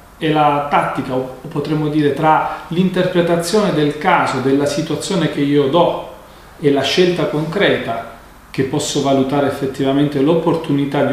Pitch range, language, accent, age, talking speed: 130-170 Hz, Italian, native, 40-59, 135 wpm